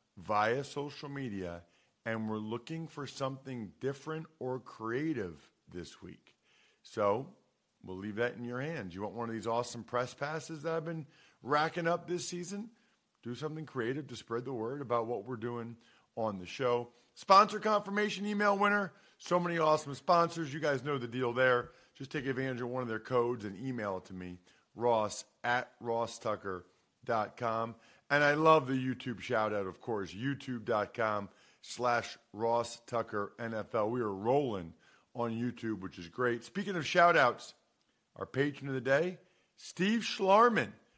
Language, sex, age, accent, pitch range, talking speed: English, male, 40-59, American, 110-150 Hz, 160 wpm